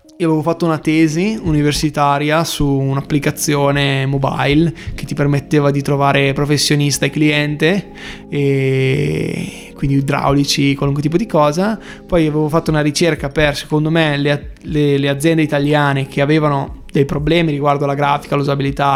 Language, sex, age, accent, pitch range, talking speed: Italian, male, 20-39, native, 145-165 Hz, 135 wpm